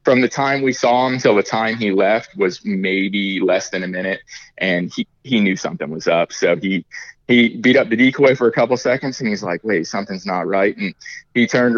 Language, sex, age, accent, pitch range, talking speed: English, male, 20-39, American, 100-130 Hz, 230 wpm